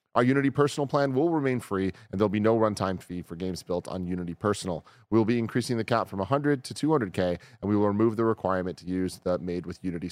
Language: English